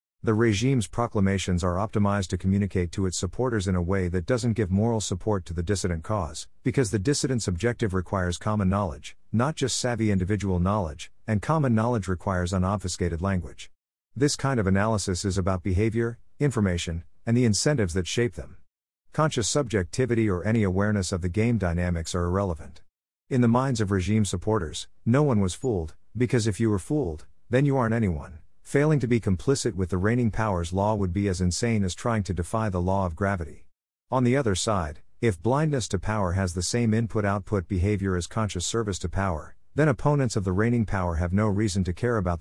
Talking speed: 190 wpm